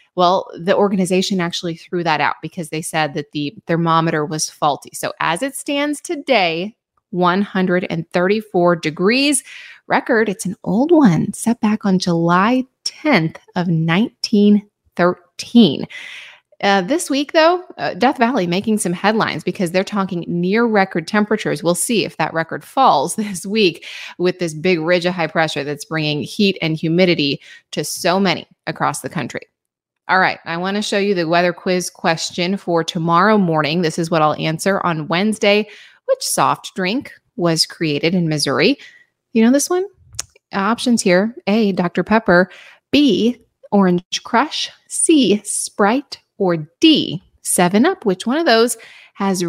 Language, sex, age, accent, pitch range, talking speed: English, female, 20-39, American, 170-230 Hz, 155 wpm